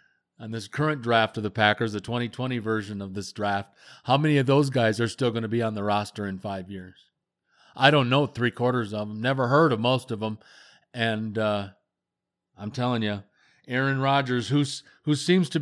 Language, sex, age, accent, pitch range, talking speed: English, male, 40-59, American, 110-140 Hz, 200 wpm